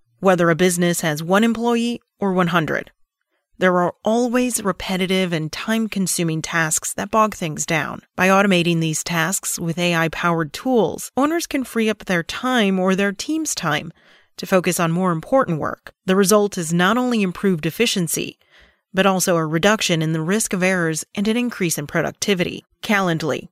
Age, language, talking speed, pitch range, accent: 30-49, English, 165 wpm, 165-210 Hz, American